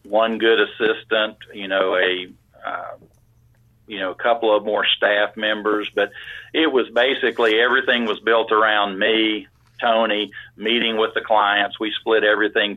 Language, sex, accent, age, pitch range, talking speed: English, male, American, 50-69, 105-115 Hz, 150 wpm